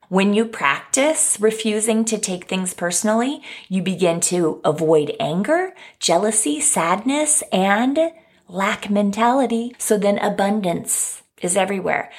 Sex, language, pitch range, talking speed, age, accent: female, English, 185-235 Hz, 115 wpm, 30-49, American